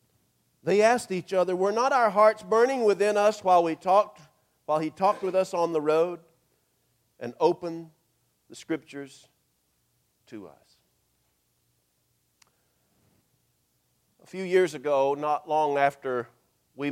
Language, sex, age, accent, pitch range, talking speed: English, male, 50-69, American, 130-175 Hz, 130 wpm